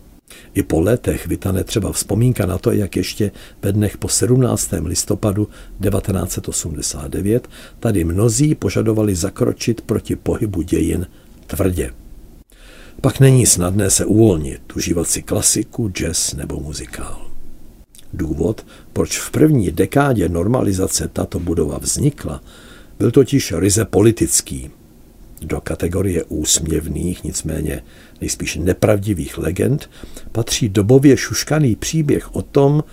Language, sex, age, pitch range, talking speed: Czech, male, 60-79, 80-110 Hz, 110 wpm